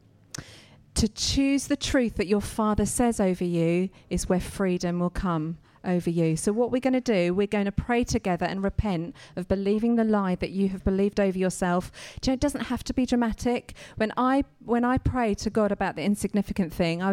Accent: British